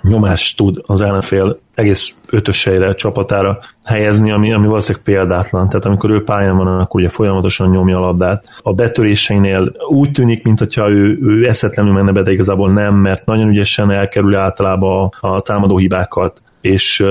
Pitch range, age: 95-110 Hz, 30-49